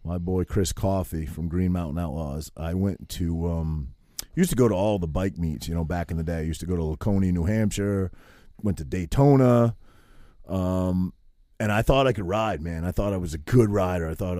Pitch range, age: 85-105 Hz, 30-49